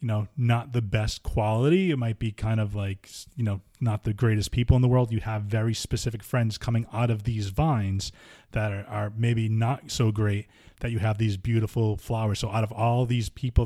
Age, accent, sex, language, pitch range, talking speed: 20-39, American, male, English, 105-120 Hz, 220 wpm